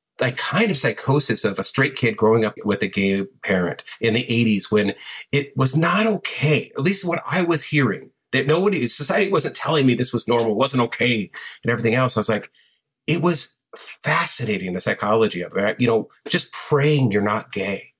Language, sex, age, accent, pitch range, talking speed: English, male, 40-59, American, 110-140 Hz, 195 wpm